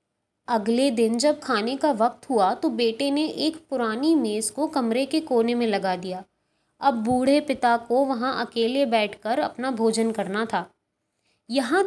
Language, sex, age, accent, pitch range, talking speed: Hindi, female, 20-39, native, 220-295 Hz, 160 wpm